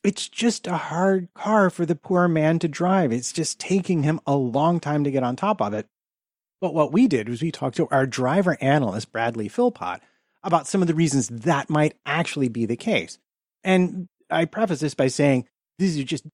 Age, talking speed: 30-49, 215 wpm